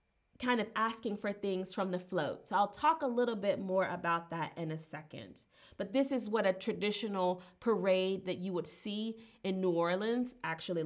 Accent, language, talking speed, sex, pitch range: American, English, 195 wpm, female, 185-250 Hz